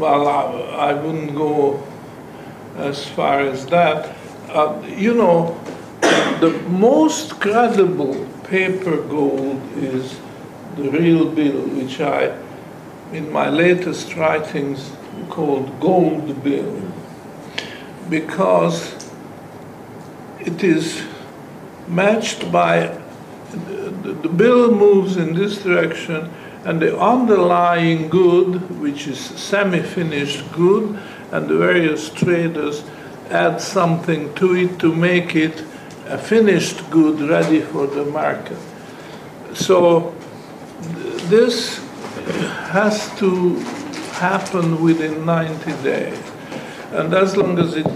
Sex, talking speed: male, 100 wpm